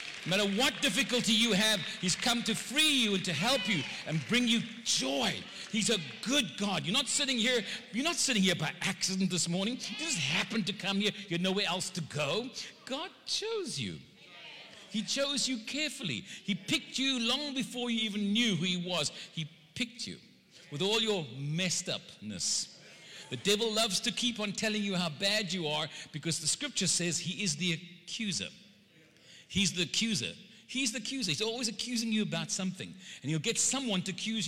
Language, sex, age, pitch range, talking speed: English, male, 60-79, 180-230 Hz, 195 wpm